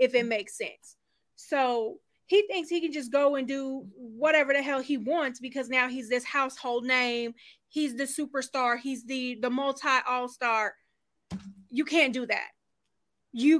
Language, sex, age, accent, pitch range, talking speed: English, female, 20-39, American, 245-325 Hz, 165 wpm